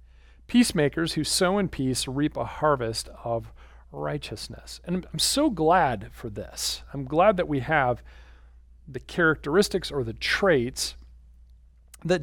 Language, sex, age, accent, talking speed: English, male, 40-59, American, 130 wpm